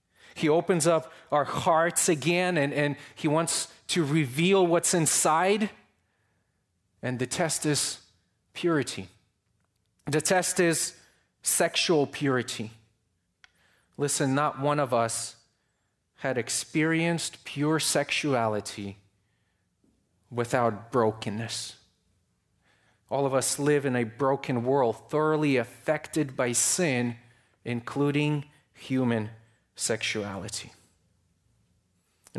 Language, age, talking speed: English, 30-49, 95 wpm